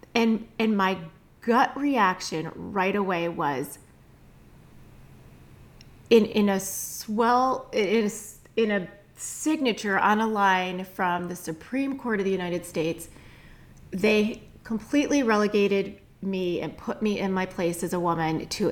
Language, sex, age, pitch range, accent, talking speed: English, female, 30-49, 180-225 Hz, American, 135 wpm